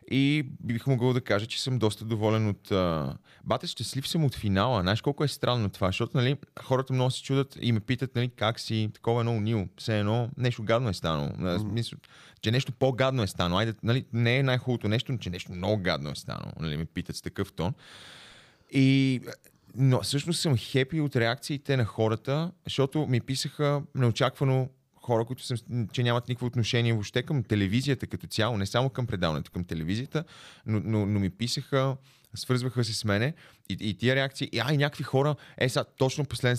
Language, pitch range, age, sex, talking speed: Bulgarian, 110-135 Hz, 30-49, male, 195 wpm